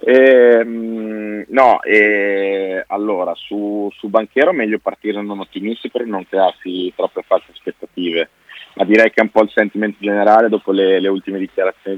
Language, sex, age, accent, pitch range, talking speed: Italian, male, 30-49, native, 90-110 Hz, 155 wpm